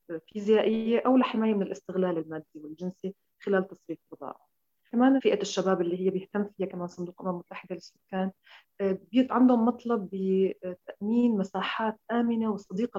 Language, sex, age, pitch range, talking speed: Arabic, female, 30-49, 180-215 Hz, 130 wpm